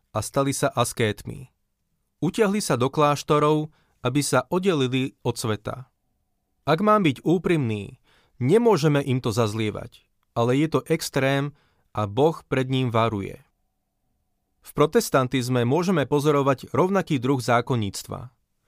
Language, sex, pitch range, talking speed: Slovak, male, 125-155 Hz, 120 wpm